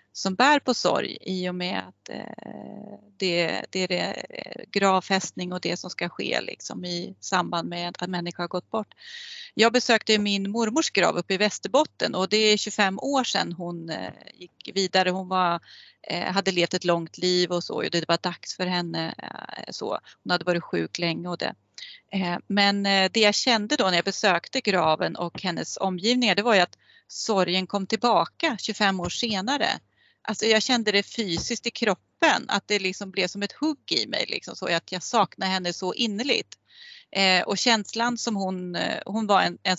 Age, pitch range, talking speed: 30-49, 180-220 Hz, 180 wpm